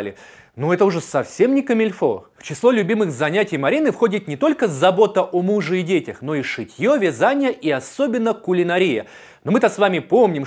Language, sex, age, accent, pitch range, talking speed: Russian, male, 30-49, native, 155-230 Hz, 180 wpm